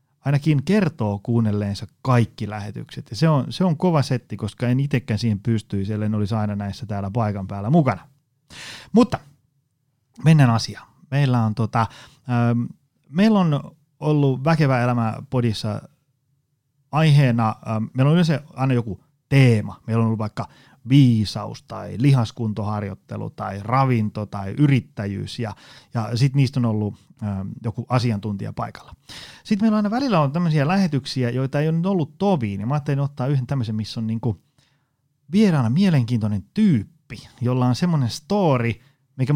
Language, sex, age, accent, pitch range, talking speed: Finnish, male, 30-49, native, 110-145 Hz, 150 wpm